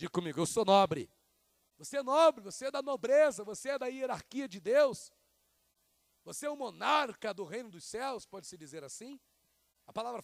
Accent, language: Brazilian, Portuguese